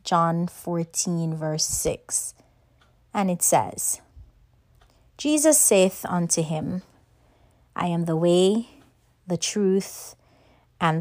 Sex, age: female, 30-49